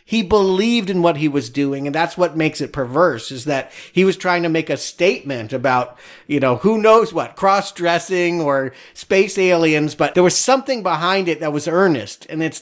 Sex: male